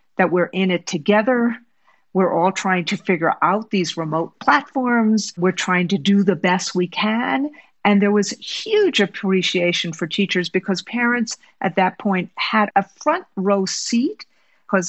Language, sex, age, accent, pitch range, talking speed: English, female, 50-69, American, 175-215 Hz, 160 wpm